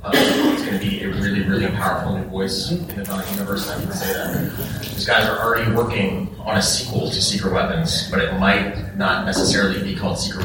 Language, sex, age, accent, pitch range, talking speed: English, male, 30-49, American, 95-105 Hz, 220 wpm